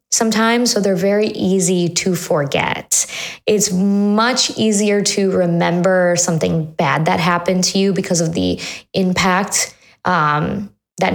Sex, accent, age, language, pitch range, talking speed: female, American, 20-39, English, 175-205 Hz, 130 wpm